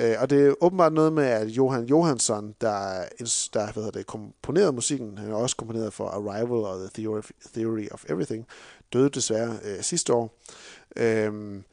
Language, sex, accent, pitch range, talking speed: Danish, male, native, 110-140 Hz, 160 wpm